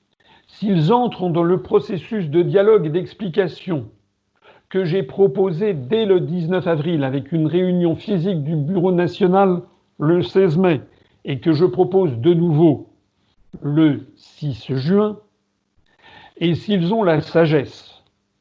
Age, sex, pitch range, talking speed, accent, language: 60-79, male, 130-180 Hz, 130 wpm, French, French